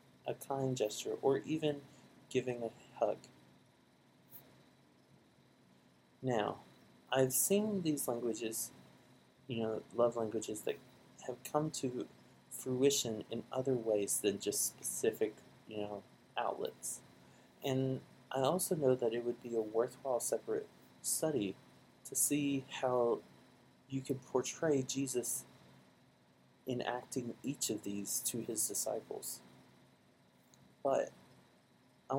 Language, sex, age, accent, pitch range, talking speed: English, male, 30-49, American, 110-145 Hz, 110 wpm